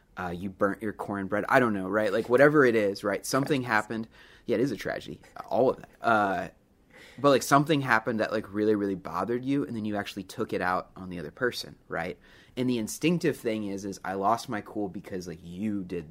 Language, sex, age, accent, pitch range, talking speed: English, male, 30-49, American, 95-120 Hz, 225 wpm